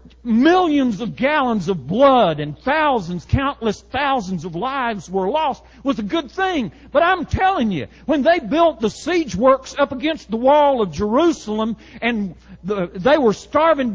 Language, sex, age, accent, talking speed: English, male, 50-69, American, 160 wpm